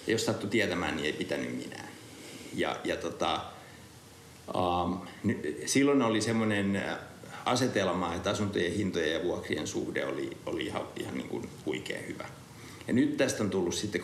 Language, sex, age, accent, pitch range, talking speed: Finnish, male, 60-79, native, 100-120 Hz, 145 wpm